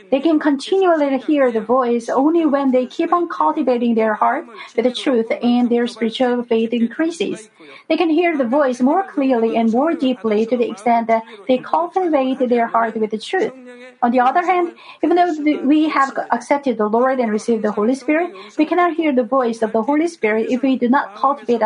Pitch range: 230-300 Hz